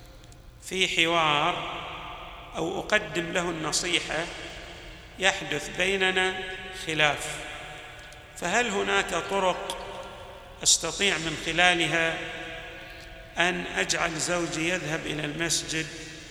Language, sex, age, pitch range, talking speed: Arabic, male, 50-69, 160-205 Hz, 75 wpm